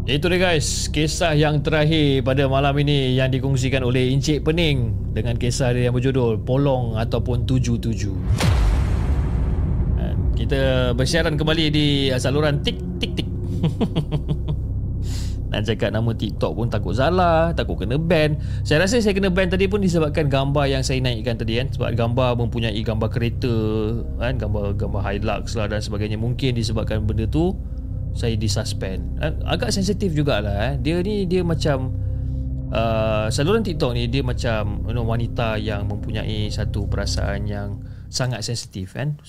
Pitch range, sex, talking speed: 105-140 Hz, male, 145 wpm